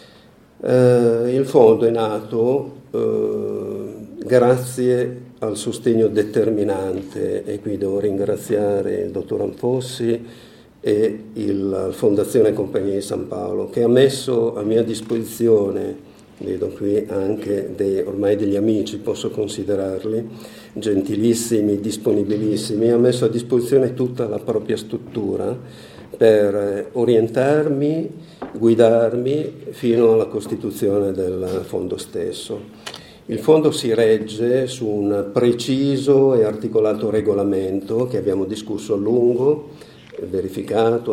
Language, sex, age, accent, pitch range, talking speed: Italian, male, 50-69, native, 105-125 Hz, 110 wpm